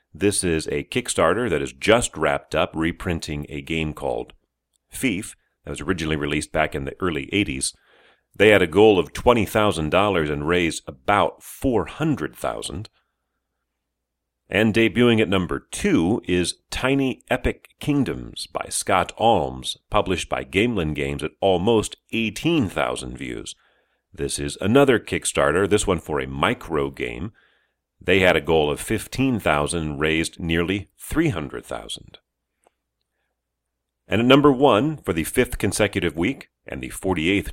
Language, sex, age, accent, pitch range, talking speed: English, male, 40-59, American, 70-105 Hz, 135 wpm